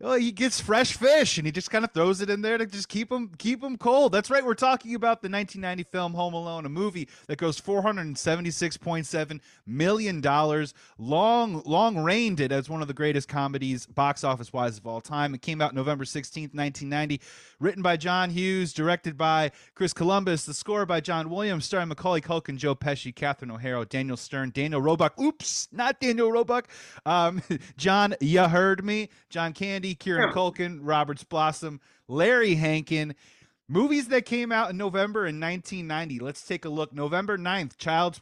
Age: 30-49